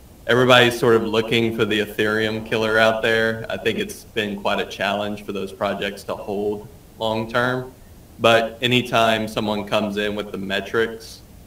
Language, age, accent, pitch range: English, 20-39, American, 100-110 Hz